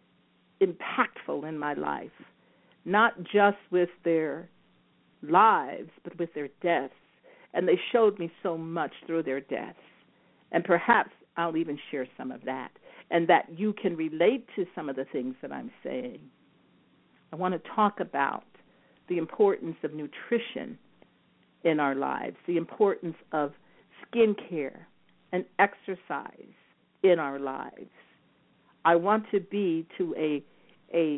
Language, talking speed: English, 140 wpm